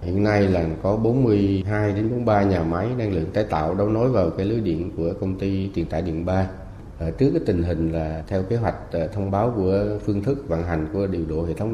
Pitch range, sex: 85-105 Hz, male